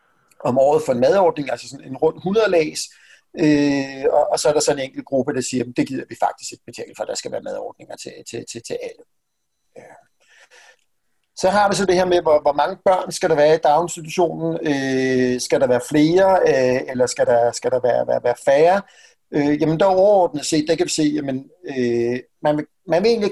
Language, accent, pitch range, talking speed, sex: Danish, native, 135-185 Hz, 225 wpm, male